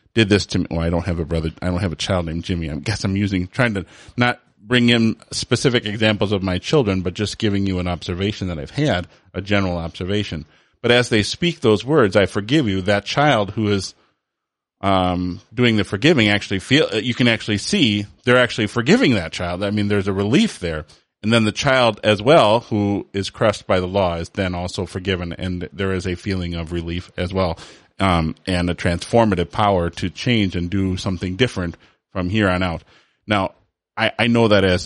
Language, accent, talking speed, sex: English, American, 210 wpm, male